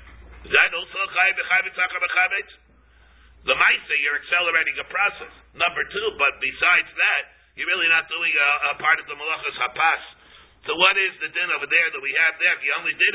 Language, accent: English, American